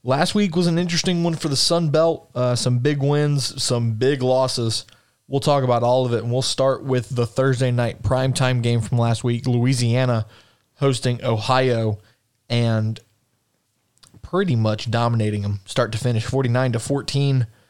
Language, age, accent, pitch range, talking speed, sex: English, 20-39, American, 115-130 Hz, 165 wpm, male